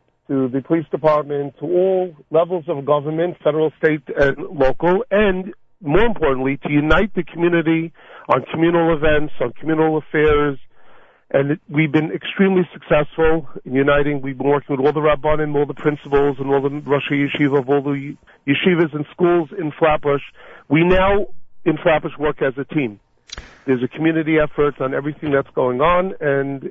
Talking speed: 165 wpm